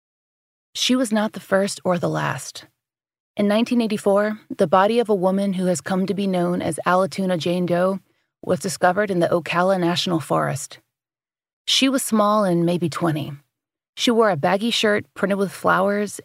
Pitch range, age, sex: 170-205 Hz, 30-49, female